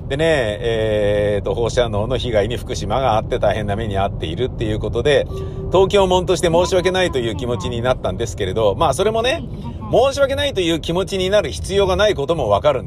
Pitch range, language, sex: 105-150 Hz, Japanese, male